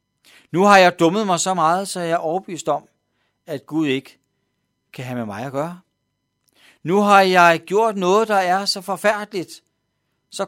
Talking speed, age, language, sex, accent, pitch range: 180 wpm, 60-79, Danish, male, native, 125-185 Hz